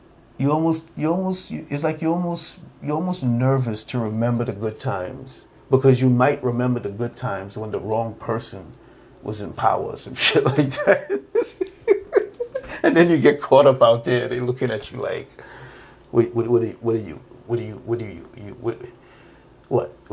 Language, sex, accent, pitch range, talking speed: English, male, American, 110-135 Hz, 165 wpm